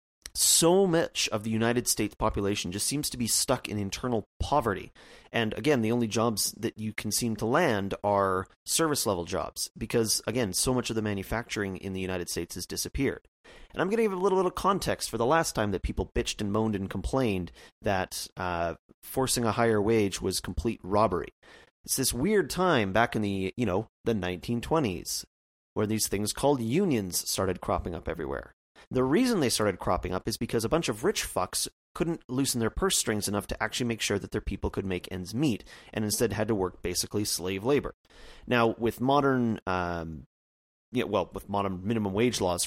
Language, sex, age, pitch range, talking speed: English, male, 30-49, 95-120 Hz, 195 wpm